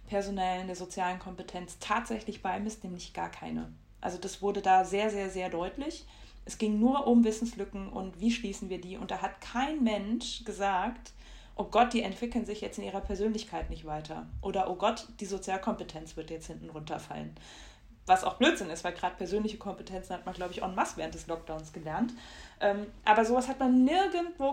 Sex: female